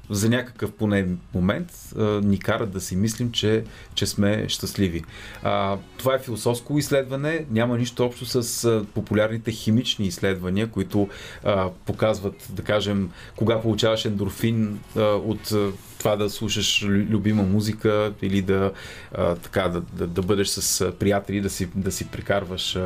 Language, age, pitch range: Bulgarian, 30-49, 100-115 Hz